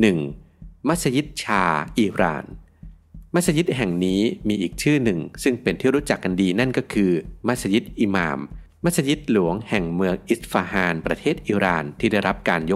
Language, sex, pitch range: Thai, male, 85-115 Hz